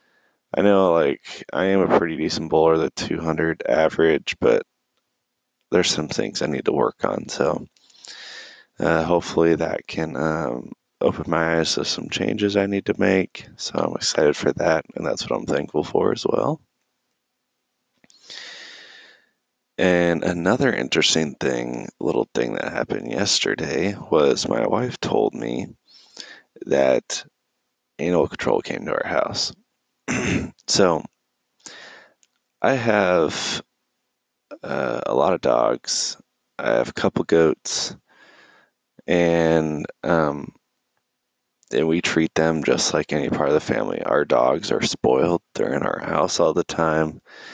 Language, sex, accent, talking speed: English, male, American, 135 wpm